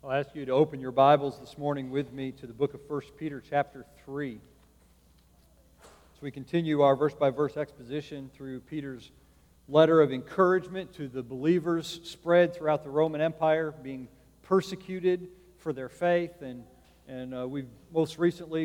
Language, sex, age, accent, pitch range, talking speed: English, male, 40-59, American, 145-185 Hz, 160 wpm